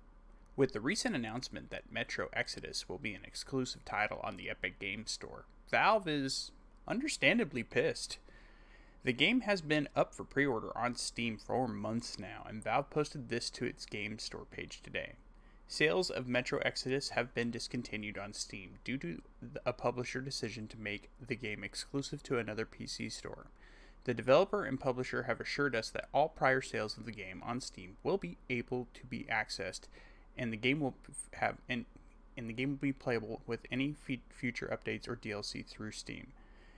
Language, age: English, 20-39